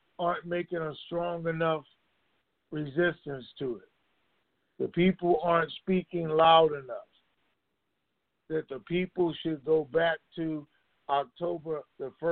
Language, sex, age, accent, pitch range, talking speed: English, male, 50-69, American, 140-170 Hz, 110 wpm